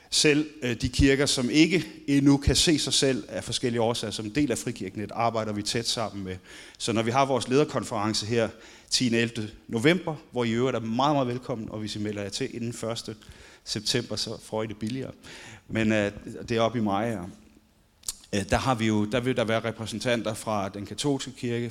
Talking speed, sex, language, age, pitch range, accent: 200 wpm, male, Danish, 30-49, 105-130 Hz, native